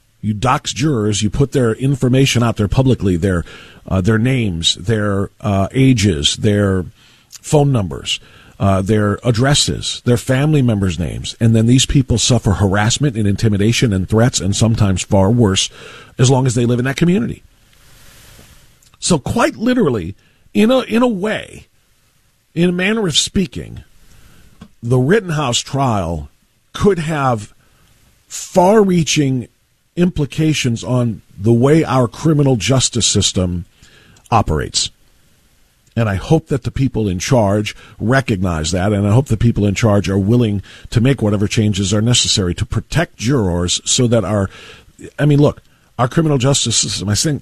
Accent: American